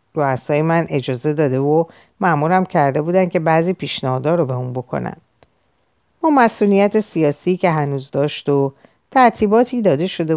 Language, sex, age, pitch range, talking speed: Persian, female, 50-69, 140-195 Hz, 145 wpm